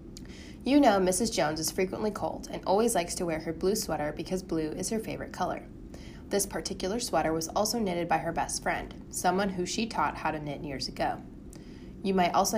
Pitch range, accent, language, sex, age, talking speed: 160-200 Hz, American, English, female, 20-39, 205 wpm